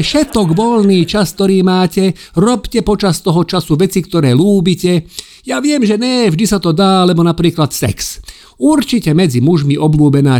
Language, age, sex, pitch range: Slovak, 50-69, male, 125-200 Hz